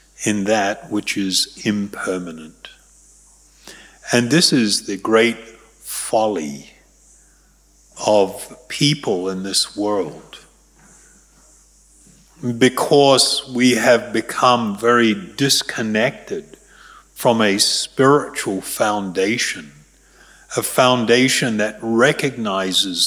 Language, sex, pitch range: English, male, 100-140 Hz